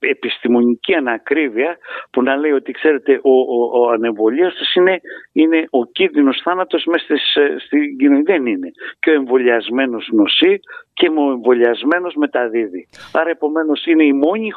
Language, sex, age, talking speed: Greek, male, 60-79, 140 wpm